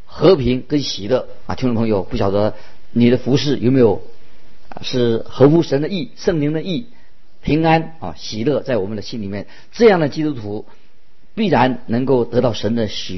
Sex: male